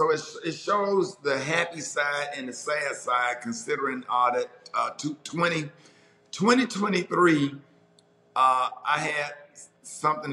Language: English